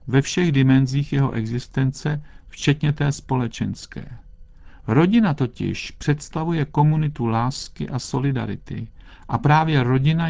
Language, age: Czech, 50-69